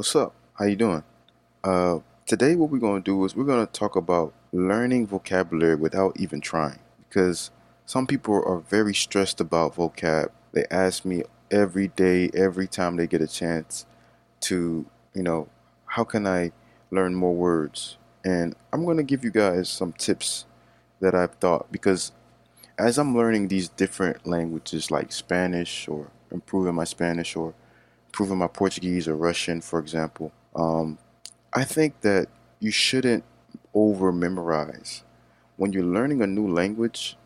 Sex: male